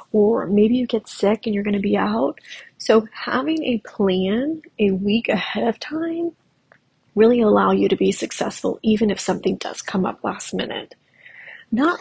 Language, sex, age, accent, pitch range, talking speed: English, female, 30-49, American, 200-250 Hz, 170 wpm